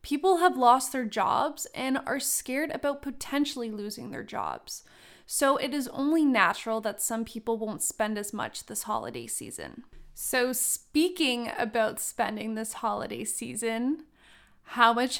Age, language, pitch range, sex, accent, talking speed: 20-39, English, 220-270 Hz, female, American, 145 wpm